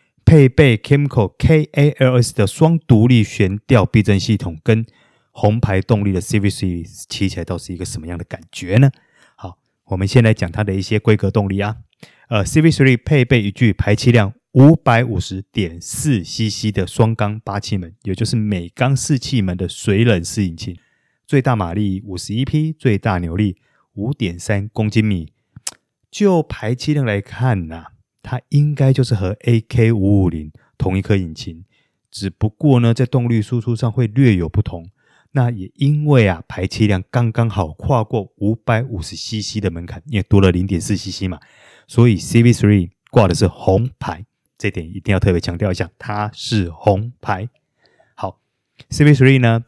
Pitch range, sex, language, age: 95-125 Hz, male, Chinese, 30-49